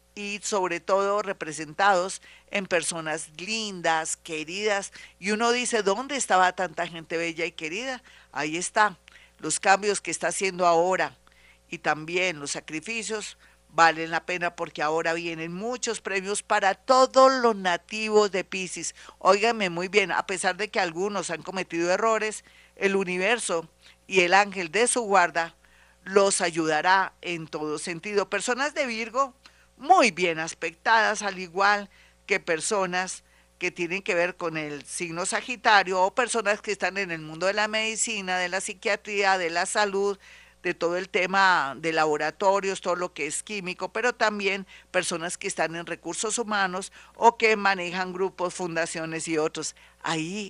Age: 50-69